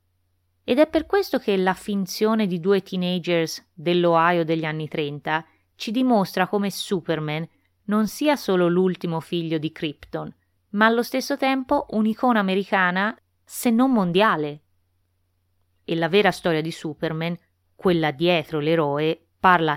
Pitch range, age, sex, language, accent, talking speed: 150-210 Hz, 20-39, female, Italian, native, 135 wpm